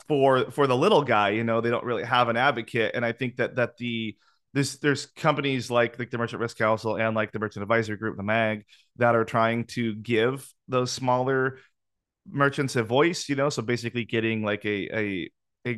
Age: 30-49